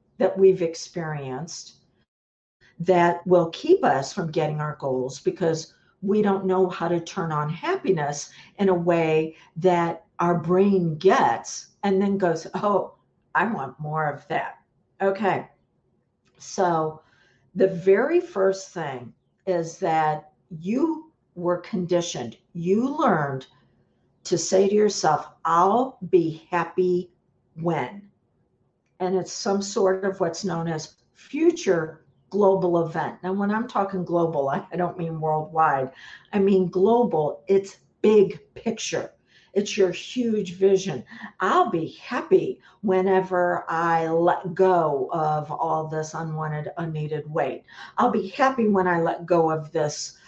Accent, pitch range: American, 160-195 Hz